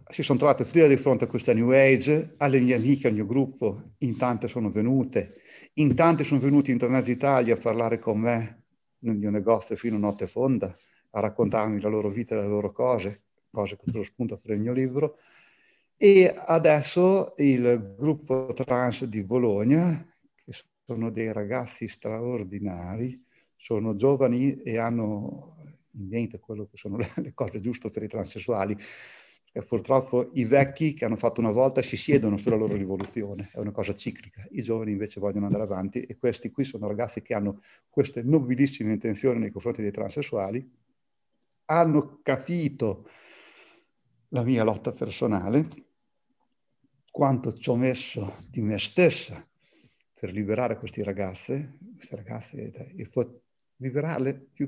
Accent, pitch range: native, 110-140 Hz